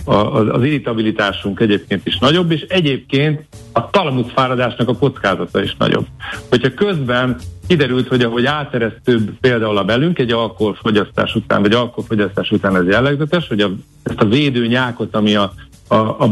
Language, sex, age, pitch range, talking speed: Hungarian, male, 60-79, 105-130 Hz, 145 wpm